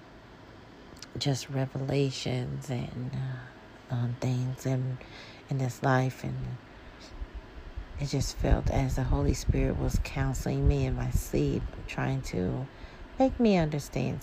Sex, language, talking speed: female, English, 120 wpm